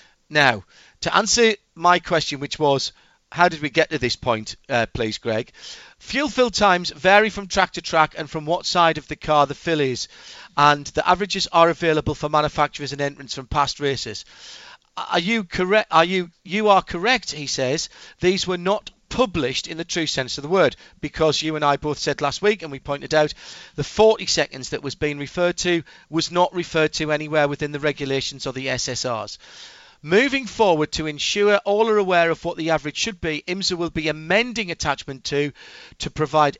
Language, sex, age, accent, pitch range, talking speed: English, male, 40-59, British, 150-195 Hz, 195 wpm